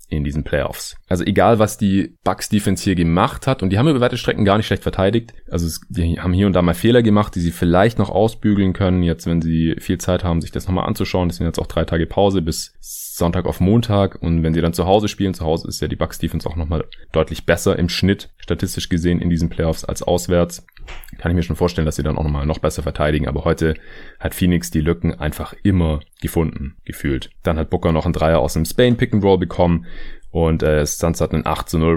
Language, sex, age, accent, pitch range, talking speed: German, male, 30-49, German, 80-95 Hz, 235 wpm